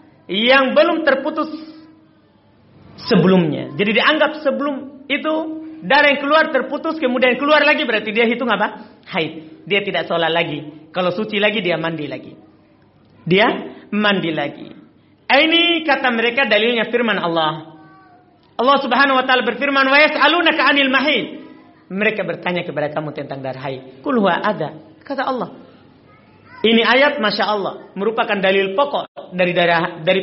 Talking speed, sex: 130 wpm, male